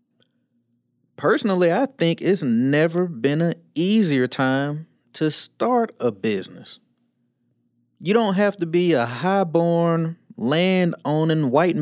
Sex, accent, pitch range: male, American, 120-170 Hz